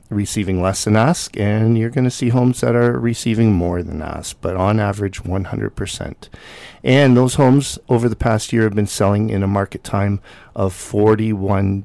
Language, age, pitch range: English, 50-69, 100-120 Hz